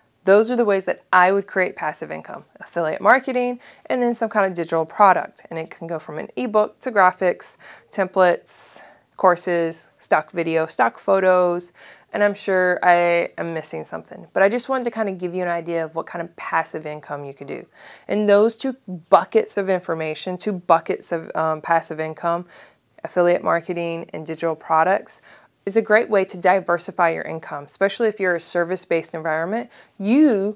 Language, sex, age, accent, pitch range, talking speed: English, female, 20-39, American, 165-205 Hz, 185 wpm